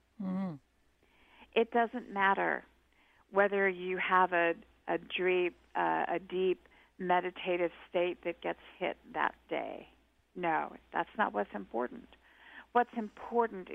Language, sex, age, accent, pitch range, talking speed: English, female, 50-69, American, 170-195 Hz, 100 wpm